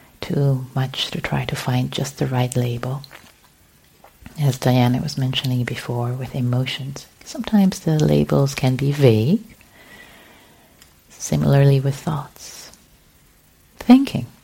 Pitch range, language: 125-155 Hz, English